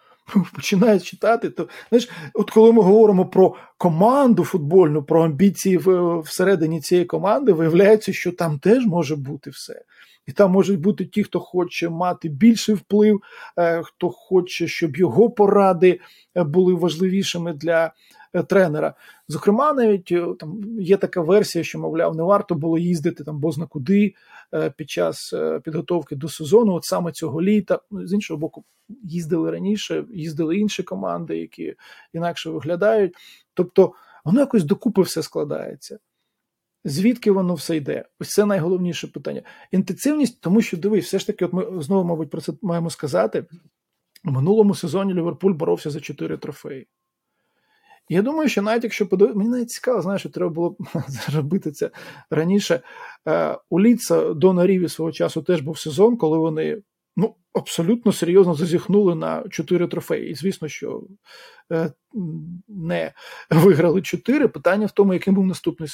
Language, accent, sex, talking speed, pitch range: Ukrainian, native, male, 140 wpm, 165-205 Hz